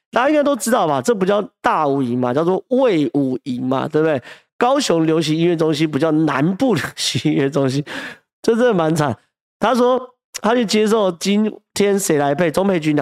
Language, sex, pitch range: Chinese, male, 150-205 Hz